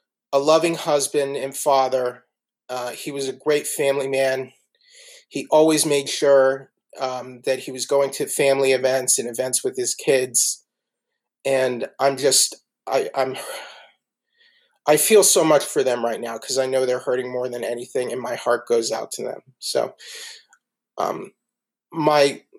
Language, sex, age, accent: English, male, 30-49, American